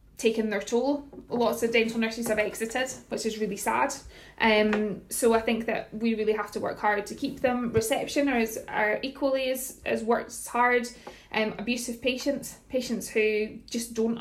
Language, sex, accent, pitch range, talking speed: English, female, British, 205-235 Hz, 180 wpm